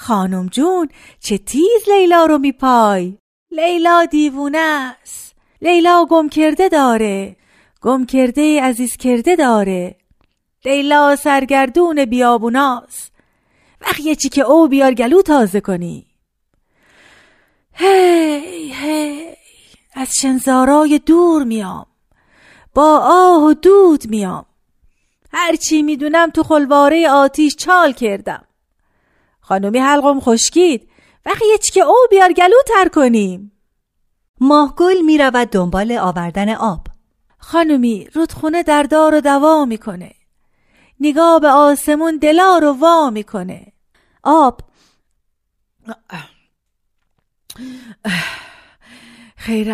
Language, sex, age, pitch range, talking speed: Persian, female, 40-59, 235-320 Hz, 100 wpm